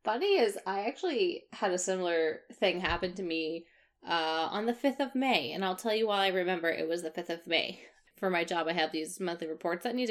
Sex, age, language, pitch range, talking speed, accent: female, 20-39, English, 165-230 Hz, 235 wpm, American